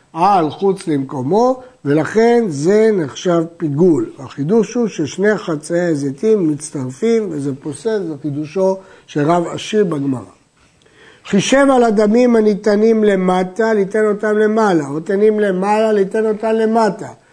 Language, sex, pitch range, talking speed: Hebrew, male, 170-220 Hz, 120 wpm